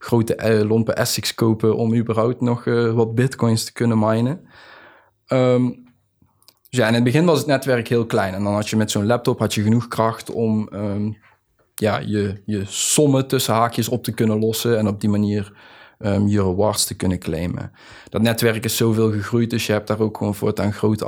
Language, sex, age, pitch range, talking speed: Dutch, male, 20-39, 105-120 Hz, 180 wpm